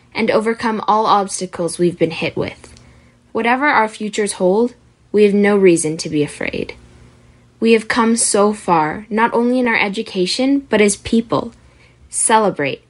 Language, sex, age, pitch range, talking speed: English, female, 10-29, 180-230 Hz, 155 wpm